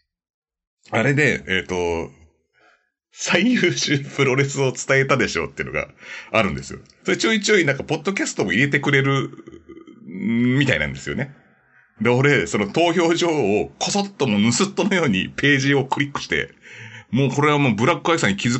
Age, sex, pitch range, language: 40-59, male, 105-180 Hz, Japanese